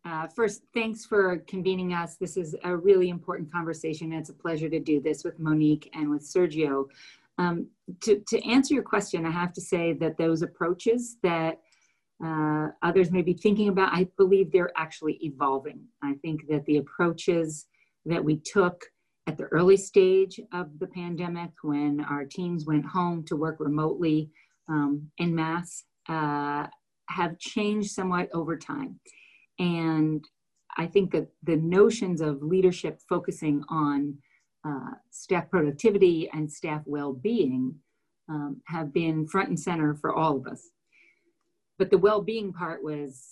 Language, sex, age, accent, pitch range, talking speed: English, female, 40-59, American, 155-190 Hz, 155 wpm